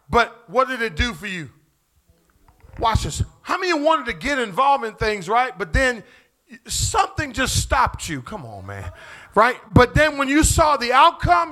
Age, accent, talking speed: 40-59, American, 195 wpm